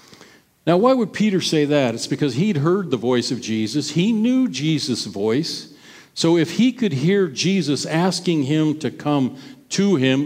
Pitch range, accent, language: 130-180 Hz, American, English